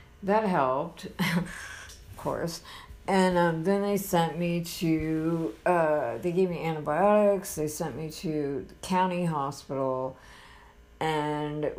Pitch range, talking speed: 120-175 Hz, 120 wpm